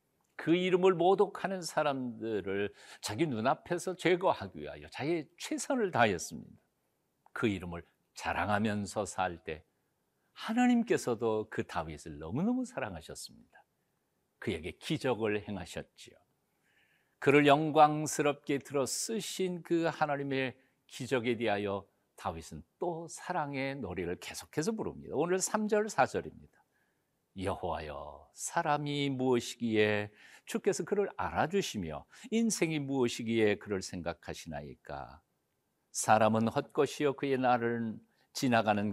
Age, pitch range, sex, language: 60-79, 105-175 Hz, male, Korean